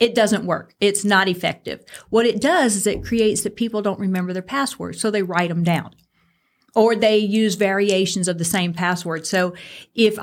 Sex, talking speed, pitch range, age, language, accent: female, 195 wpm, 180-230 Hz, 50-69, English, American